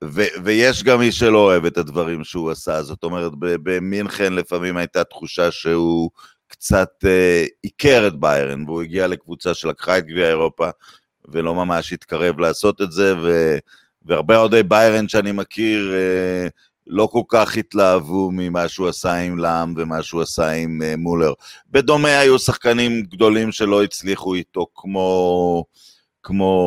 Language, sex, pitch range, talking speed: Hebrew, male, 90-110 Hz, 150 wpm